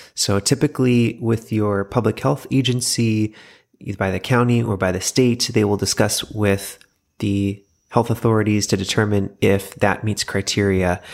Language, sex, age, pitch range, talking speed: English, male, 30-49, 100-125 Hz, 150 wpm